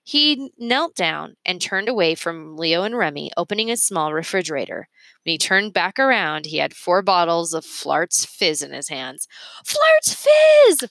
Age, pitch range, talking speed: 20-39, 175-275 Hz, 170 wpm